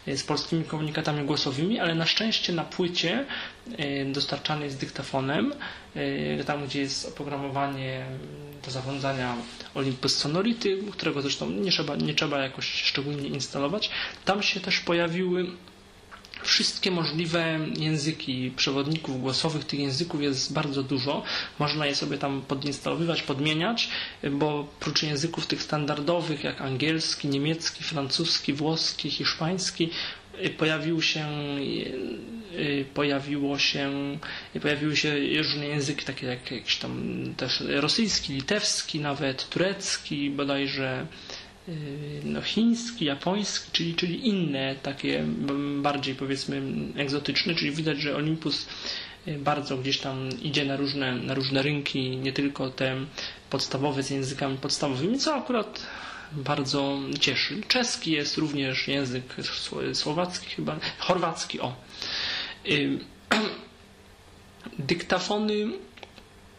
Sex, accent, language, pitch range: male, native, Polish, 135-165 Hz